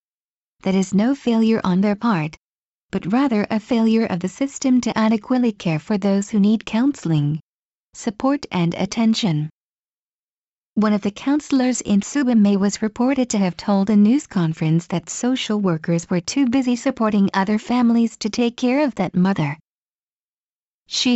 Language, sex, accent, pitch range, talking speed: English, female, American, 185-245 Hz, 155 wpm